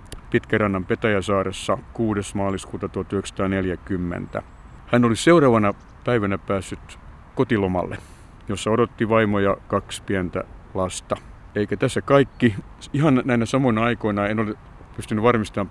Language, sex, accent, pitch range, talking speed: Finnish, male, native, 95-115 Hz, 105 wpm